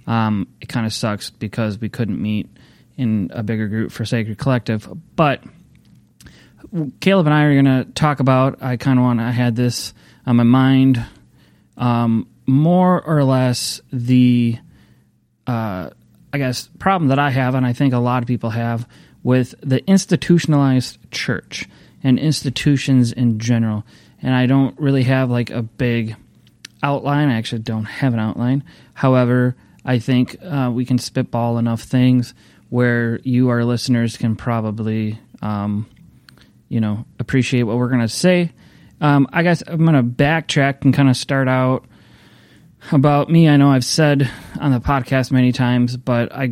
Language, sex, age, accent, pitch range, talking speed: English, male, 30-49, American, 115-140 Hz, 165 wpm